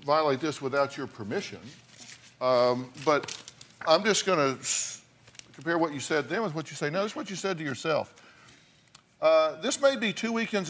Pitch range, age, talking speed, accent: 130-180 Hz, 50-69, 185 wpm, American